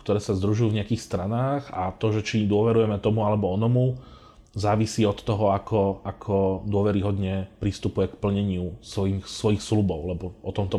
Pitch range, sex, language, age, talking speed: 95-110 Hz, male, Slovak, 30-49, 160 wpm